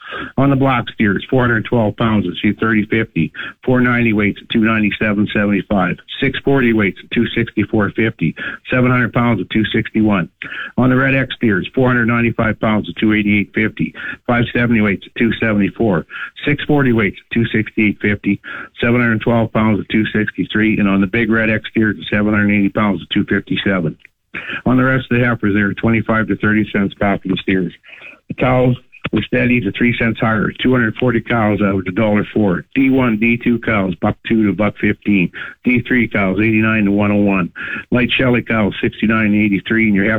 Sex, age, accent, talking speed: male, 60-79, American, 165 wpm